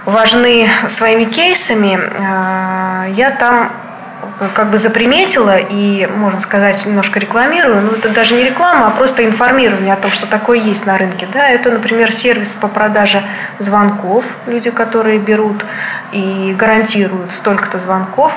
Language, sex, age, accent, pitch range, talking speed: Russian, female, 20-39, native, 195-230 Hz, 135 wpm